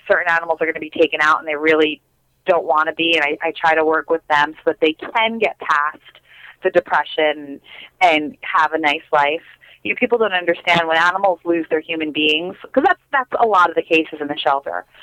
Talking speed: 230 wpm